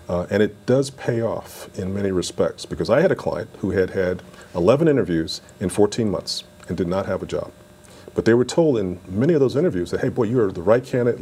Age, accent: 40-59, American